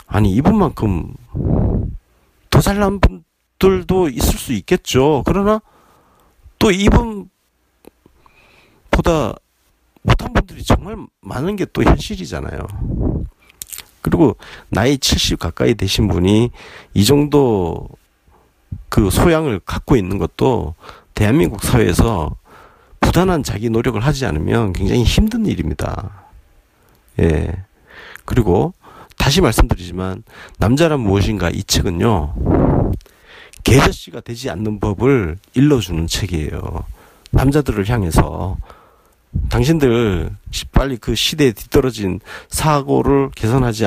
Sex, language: male, Korean